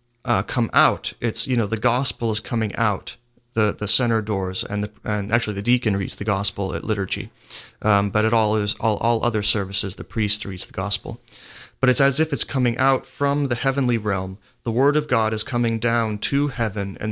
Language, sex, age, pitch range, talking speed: English, male, 30-49, 105-125 Hz, 210 wpm